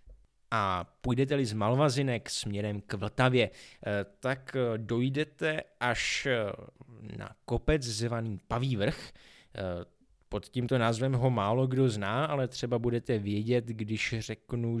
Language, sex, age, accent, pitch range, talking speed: Czech, male, 20-39, native, 105-130 Hz, 115 wpm